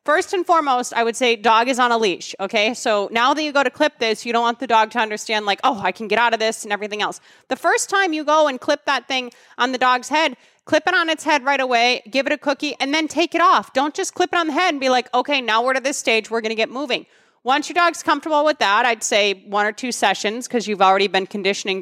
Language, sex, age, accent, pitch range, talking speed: English, female, 20-39, American, 205-285 Hz, 290 wpm